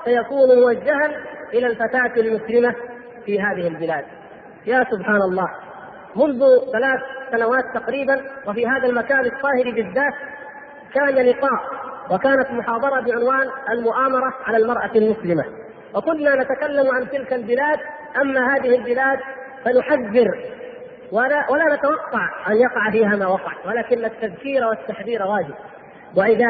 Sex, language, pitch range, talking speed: female, Arabic, 225-270 Hz, 115 wpm